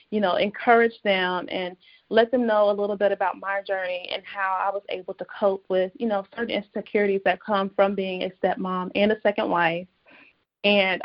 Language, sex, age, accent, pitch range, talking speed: English, female, 20-39, American, 190-220 Hz, 200 wpm